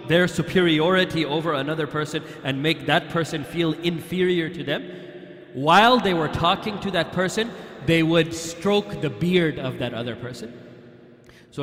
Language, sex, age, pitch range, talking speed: English, male, 30-49, 135-175 Hz, 155 wpm